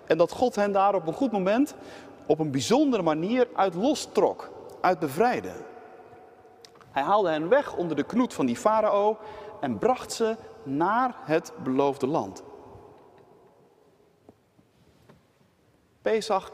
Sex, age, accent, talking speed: male, 40-59, Dutch, 130 wpm